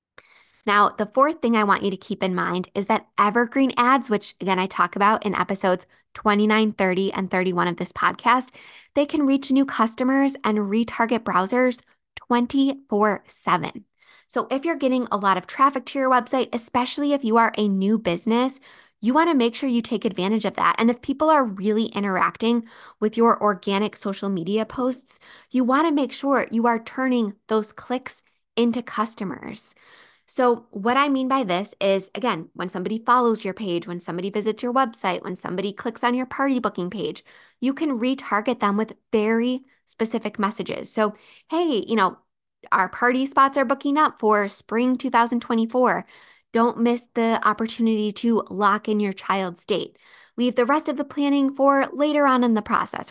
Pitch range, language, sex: 205-255 Hz, English, female